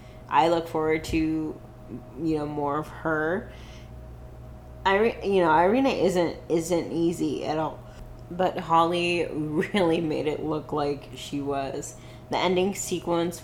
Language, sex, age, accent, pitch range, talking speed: English, female, 20-39, American, 125-165 Hz, 135 wpm